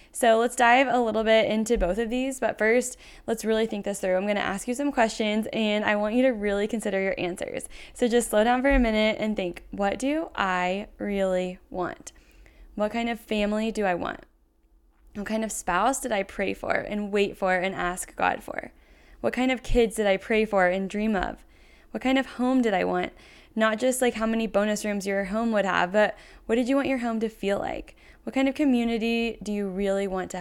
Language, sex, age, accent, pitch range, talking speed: English, female, 10-29, American, 200-245 Hz, 230 wpm